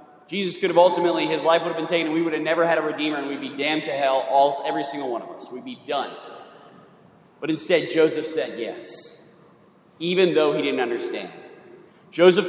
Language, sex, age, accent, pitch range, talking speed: English, male, 30-49, American, 175-240 Hz, 205 wpm